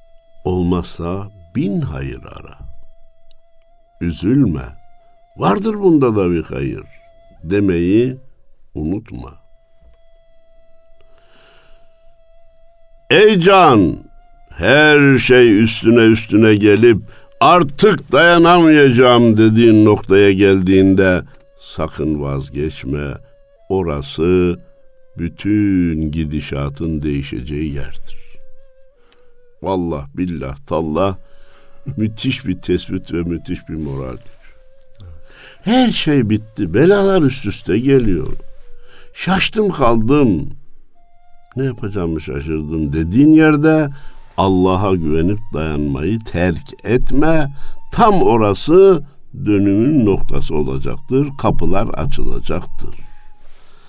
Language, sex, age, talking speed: Turkish, male, 60-79, 75 wpm